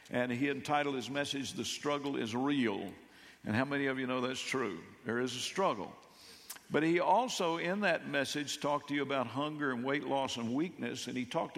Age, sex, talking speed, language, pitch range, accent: 60-79, male, 205 wpm, English, 125-150 Hz, American